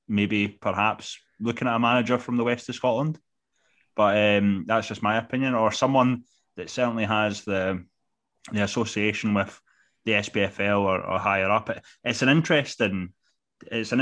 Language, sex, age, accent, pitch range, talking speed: English, male, 20-39, British, 105-125 Hz, 160 wpm